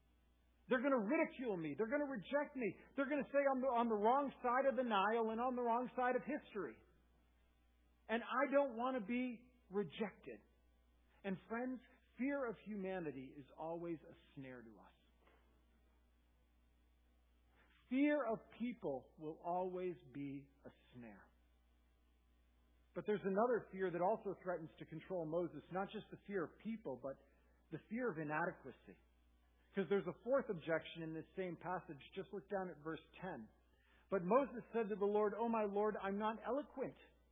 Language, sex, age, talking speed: English, male, 50-69, 165 wpm